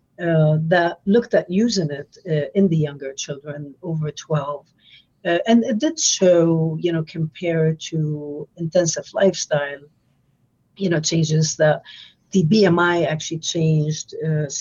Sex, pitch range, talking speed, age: female, 150-185 Hz, 130 wpm, 50-69